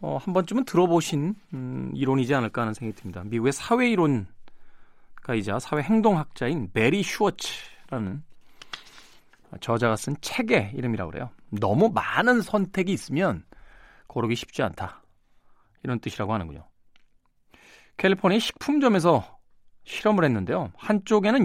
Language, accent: Korean, native